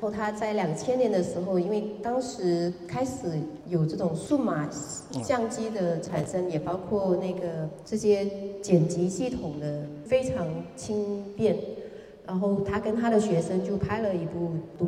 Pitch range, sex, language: 165-205 Hz, female, Chinese